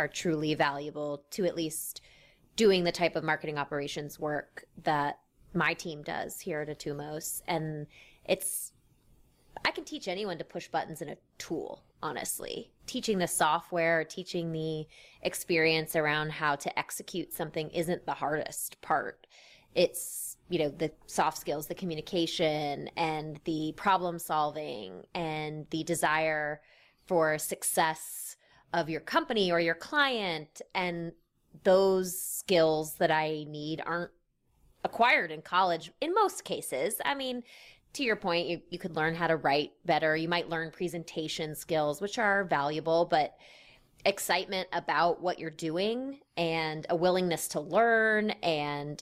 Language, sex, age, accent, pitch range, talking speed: English, female, 20-39, American, 155-180 Hz, 145 wpm